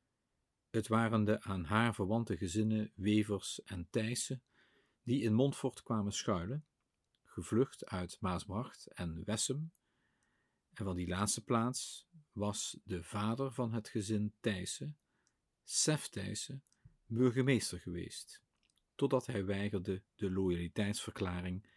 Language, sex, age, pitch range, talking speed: Dutch, male, 50-69, 100-130 Hz, 115 wpm